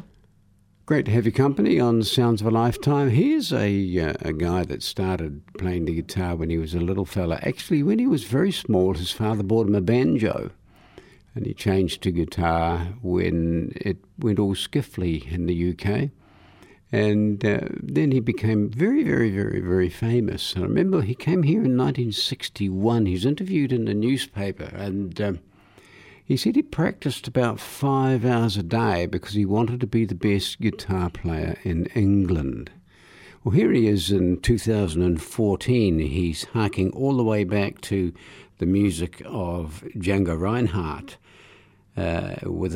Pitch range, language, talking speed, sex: 90-115 Hz, English, 165 wpm, male